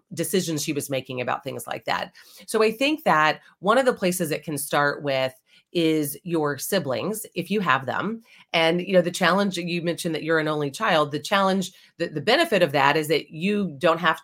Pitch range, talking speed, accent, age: 150-190 Hz, 215 wpm, American, 30-49